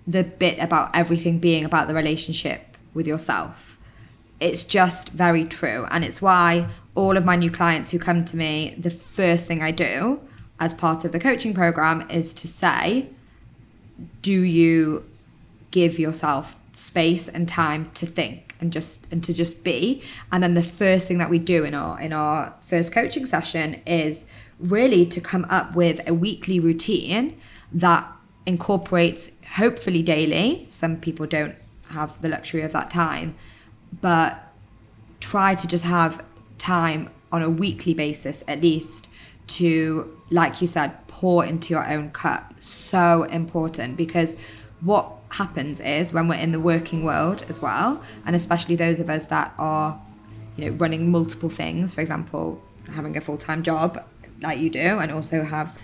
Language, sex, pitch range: English, female, 155-175 Hz